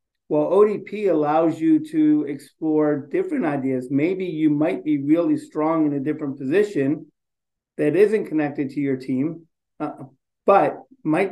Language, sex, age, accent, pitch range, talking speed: English, male, 50-69, American, 140-160 Hz, 145 wpm